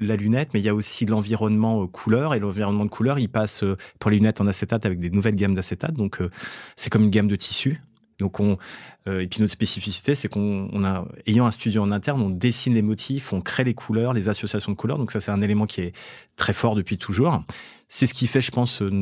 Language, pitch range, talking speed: English, 100-115 Hz, 250 wpm